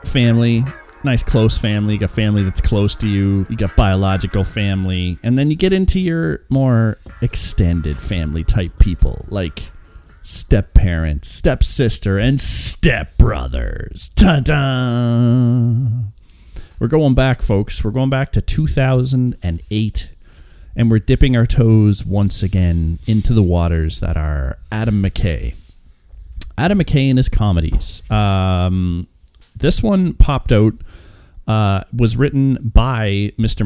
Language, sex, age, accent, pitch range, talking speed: English, male, 30-49, American, 90-115 Hz, 125 wpm